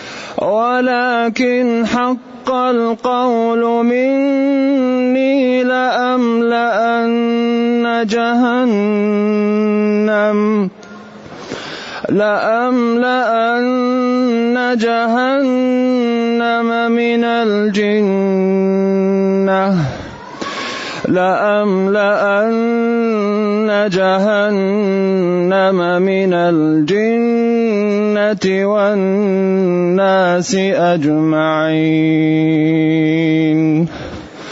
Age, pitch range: 30-49, 205-240 Hz